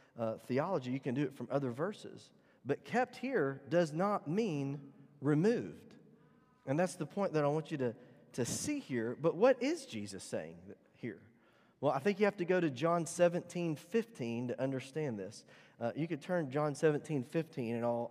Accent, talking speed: American, 180 wpm